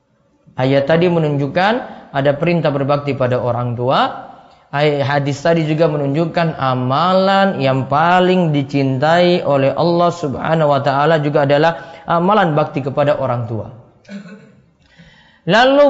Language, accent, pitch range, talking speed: Indonesian, native, 150-215 Hz, 115 wpm